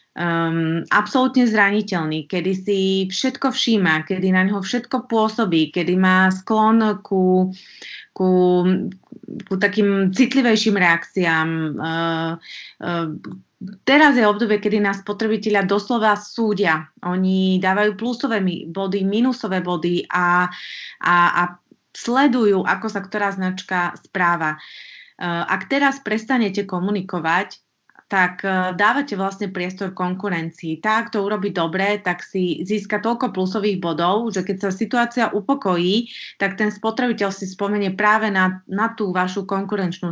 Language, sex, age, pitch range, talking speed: Slovak, female, 20-39, 180-215 Hz, 125 wpm